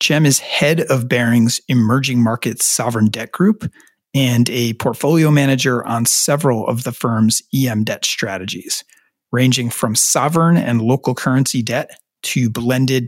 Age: 40-59